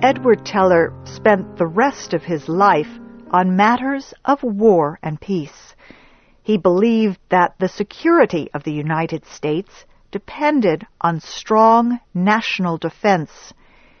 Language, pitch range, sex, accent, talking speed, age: English, 185-250 Hz, female, American, 120 wpm, 50-69